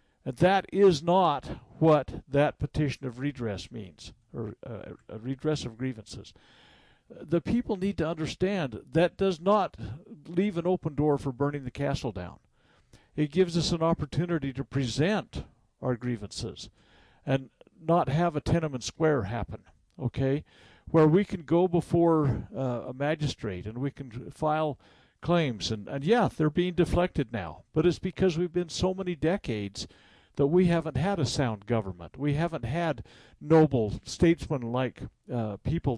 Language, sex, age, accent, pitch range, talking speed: English, male, 60-79, American, 120-170 Hz, 155 wpm